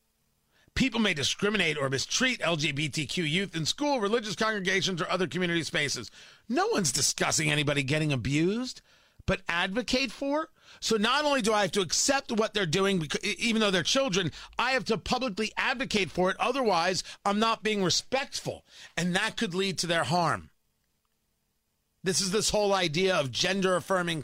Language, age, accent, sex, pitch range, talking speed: English, 40-59, American, male, 160-220 Hz, 160 wpm